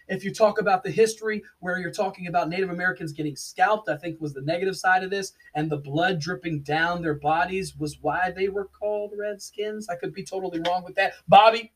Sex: male